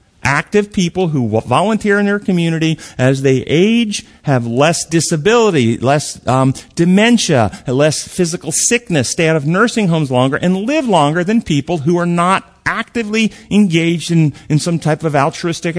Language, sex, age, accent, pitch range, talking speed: English, male, 50-69, American, 150-215 Hz, 155 wpm